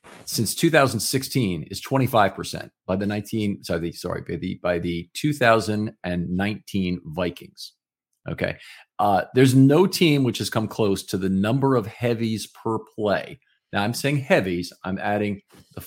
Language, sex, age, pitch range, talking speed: English, male, 40-59, 100-130 Hz, 150 wpm